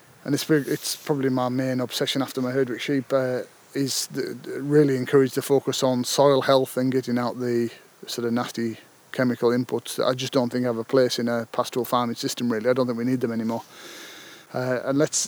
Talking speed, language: 215 wpm, English